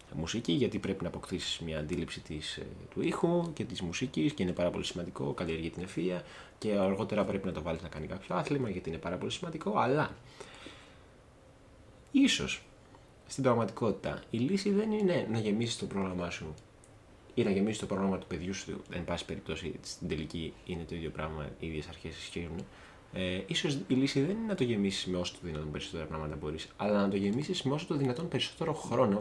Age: 20-39